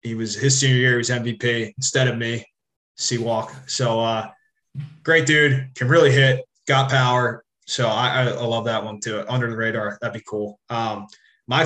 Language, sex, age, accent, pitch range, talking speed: English, male, 20-39, American, 115-135 Hz, 190 wpm